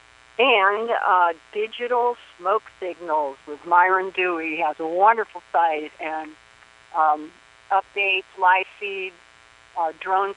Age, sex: 50-69, female